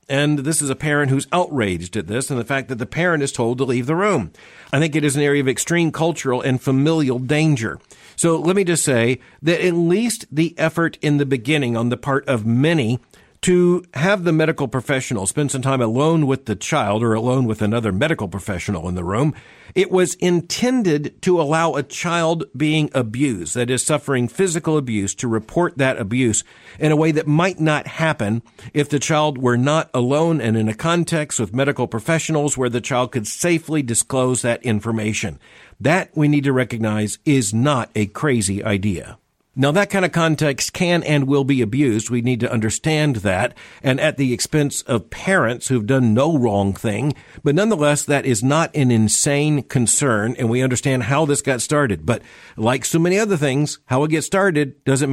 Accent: American